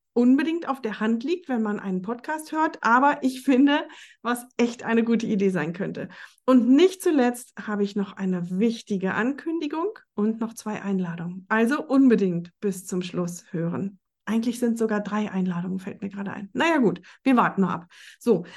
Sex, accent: female, German